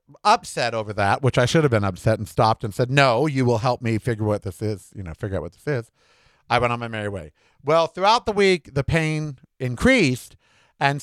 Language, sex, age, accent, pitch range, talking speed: English, male, 50-69, American, 115-160 Hz, 235 wpm